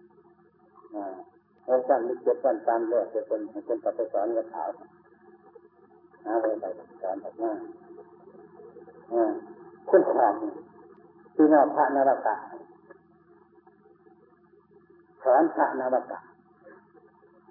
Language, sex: Thai, male